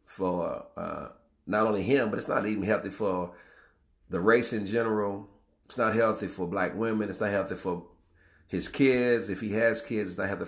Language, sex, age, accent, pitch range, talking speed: English, male, 40-59, American, 90-115 Hz, 195 wpm